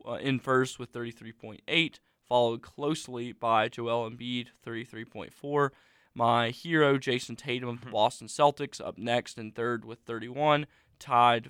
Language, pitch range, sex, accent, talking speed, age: English, 115-135 Hz, male, American, 135 wpm, 20-39